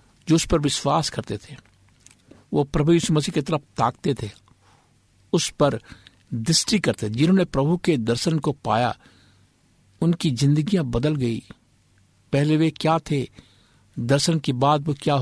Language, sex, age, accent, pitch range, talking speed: Hindi, male, 60-79, native, 110-145 Hz, 140 wpm